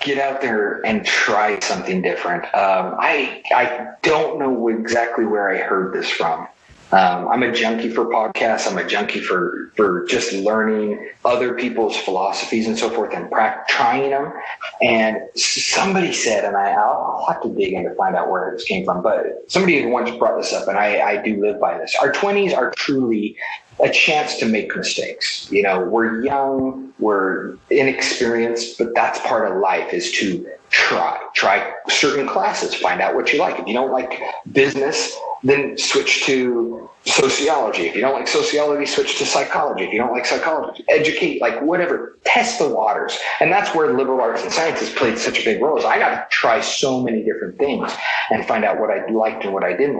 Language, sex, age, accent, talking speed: English, male, 30-49, American, 190 wpm